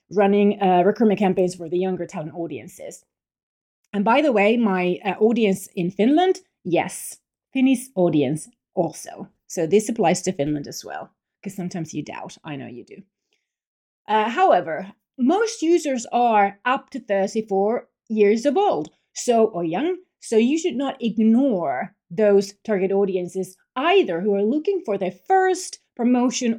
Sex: female